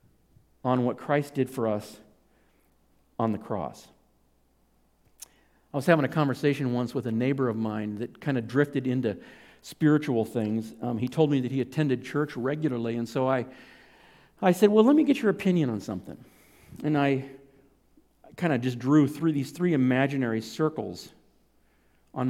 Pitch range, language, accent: 125-155 Hz, English, American